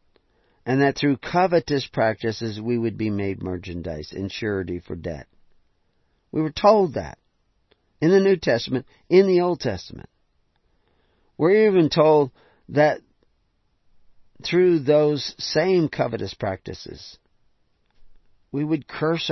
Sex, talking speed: male, 120 wpm